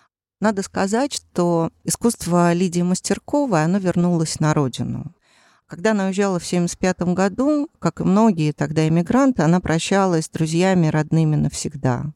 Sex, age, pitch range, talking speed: female, 40-59, 150-190 Hz, 135 wpm